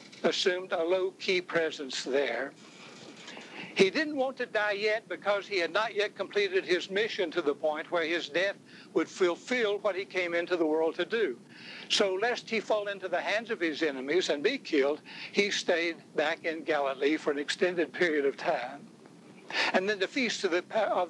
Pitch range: 165-225 Hz